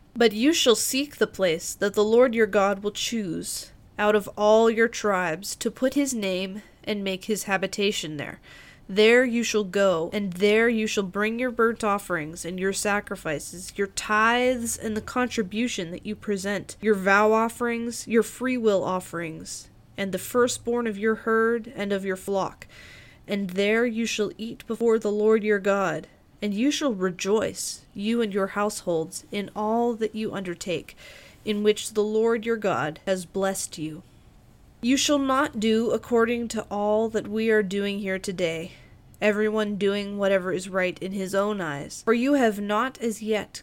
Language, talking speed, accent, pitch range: English, 175 wpm, American, 195-225 Hz